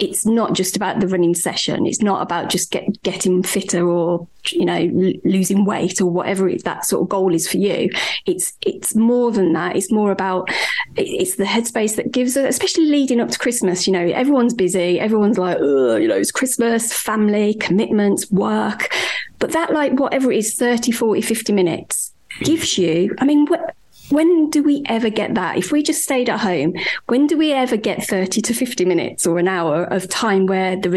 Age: 30-49